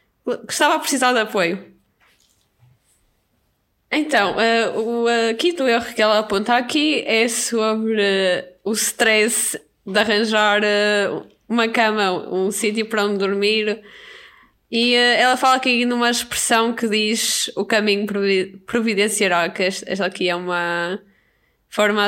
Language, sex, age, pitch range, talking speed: Portuguese, female, 20-39, 190-225 Hz, 135 wpm